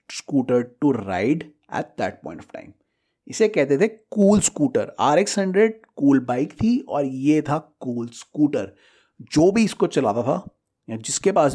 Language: Hindi